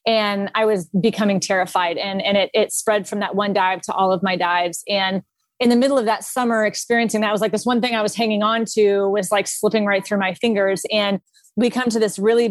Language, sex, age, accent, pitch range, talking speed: English, female, 20-39, American, 195-240 Hz, 245 wpm